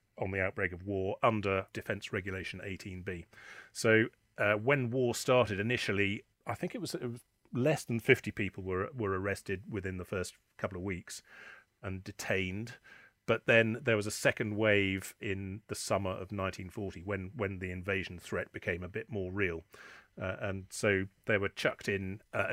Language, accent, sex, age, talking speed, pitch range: English, British, male, 40-59, 175 wpm, 95-105 Hz